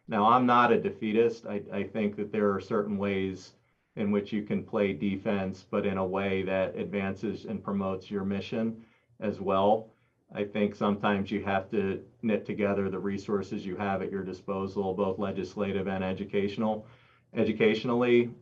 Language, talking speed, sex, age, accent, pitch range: English, 165 wpm, male, 40-59, American, 95-110 Hz